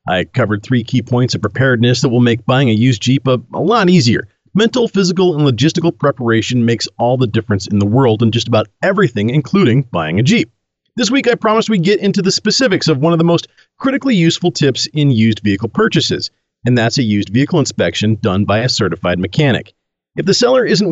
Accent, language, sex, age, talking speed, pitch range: American, English, male, 40-59, 210 wpm, 115-175 Hz